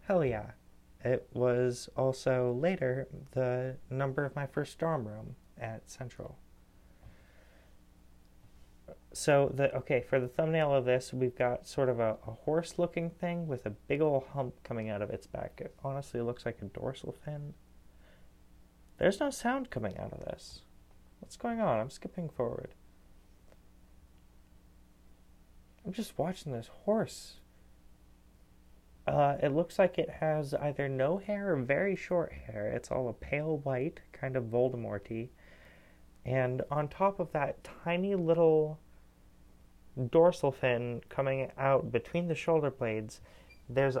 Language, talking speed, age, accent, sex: English, 140 wpm, 30-49, American, male